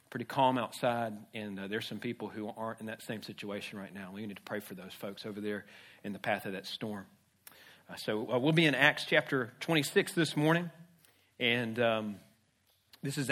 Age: 40-59